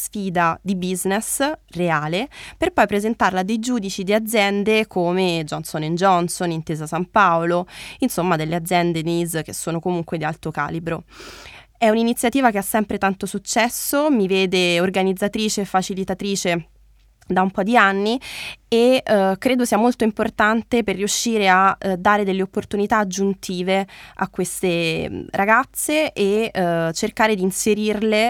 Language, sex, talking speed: Italian, female, 145 wpm